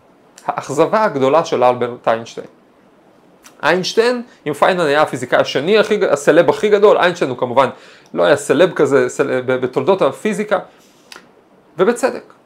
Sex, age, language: male, 30-49, Hebrew